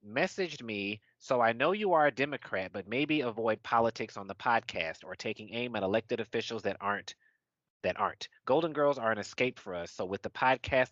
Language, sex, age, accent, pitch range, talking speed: English, male, 30-49, American, 95-130 Hz, 205 wpm